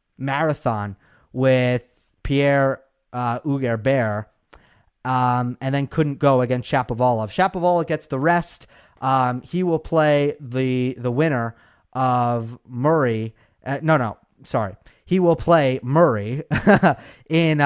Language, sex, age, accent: English, male, 30-49, American